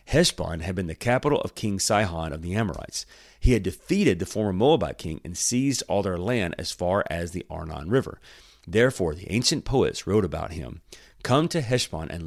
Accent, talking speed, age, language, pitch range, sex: American, 195 wpm, 40-59, English, 85-115 Hz, male